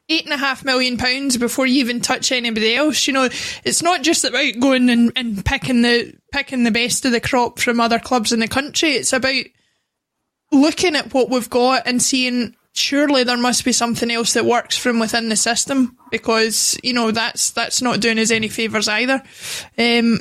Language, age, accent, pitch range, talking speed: English, 20-39, British, 235-275 Hz, 200 wpm